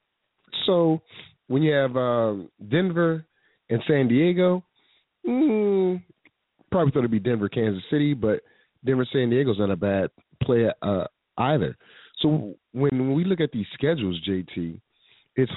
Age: 30-49